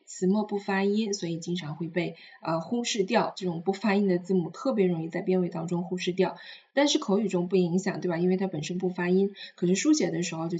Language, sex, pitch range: Chinese, female, 175-220 Hz